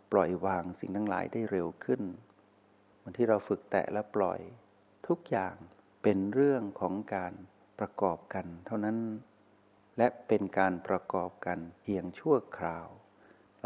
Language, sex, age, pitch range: Thai, male, 60-79, 90-110 Hz